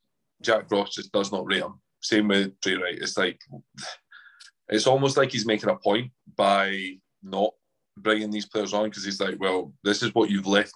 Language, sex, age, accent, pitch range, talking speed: English, male, 20-39, British, 95-110 Hz, 195 wpm